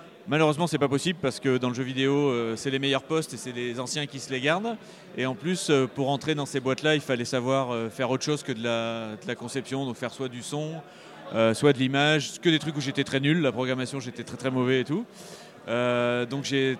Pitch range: 125-155 Hz